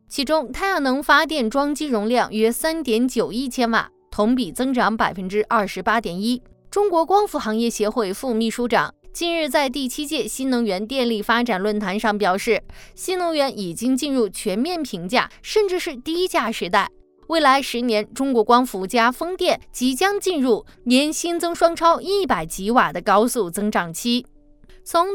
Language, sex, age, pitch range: Chinese, female, 20-39, 210-290 Hz